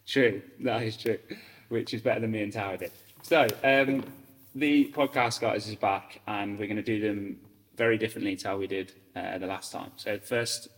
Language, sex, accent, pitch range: English, male, British, 95-110 Hz